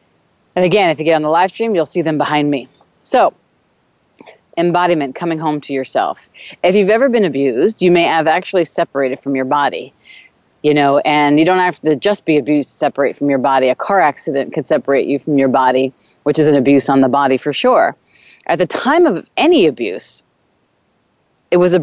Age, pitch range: 30-49, 145-175 Hz